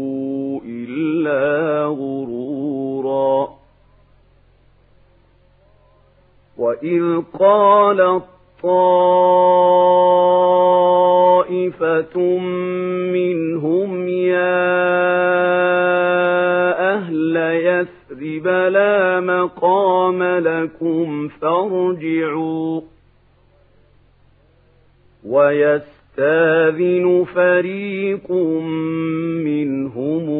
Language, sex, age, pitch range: Arabic, male, 50-69, 135-180 Hz